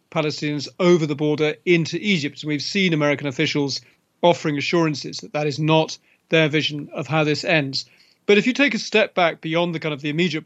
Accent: British